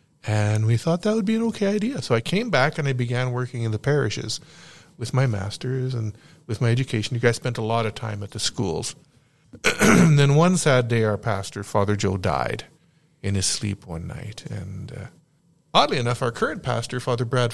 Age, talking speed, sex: 40-59, 205 wpm, male